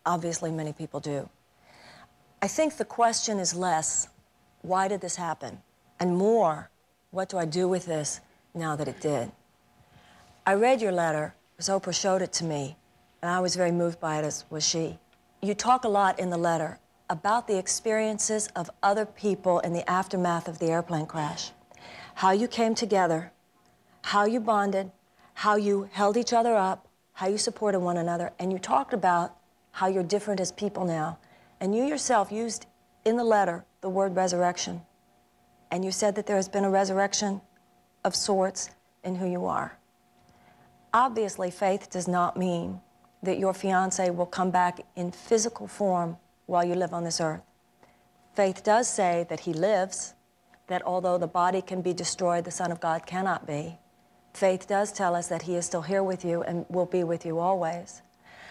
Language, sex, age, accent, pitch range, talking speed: English, female, 40-59, American, 165-195 Hz, 180 wpm